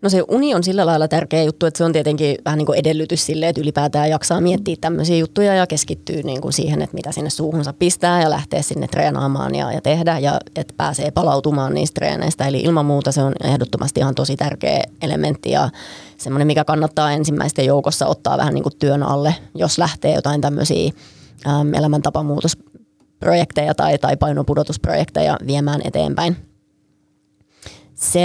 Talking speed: 160 wpm